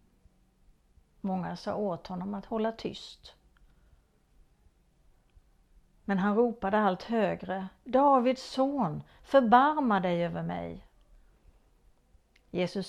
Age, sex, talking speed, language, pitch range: 50-69, female, 90 wpm, Swedish, 175-225 Hz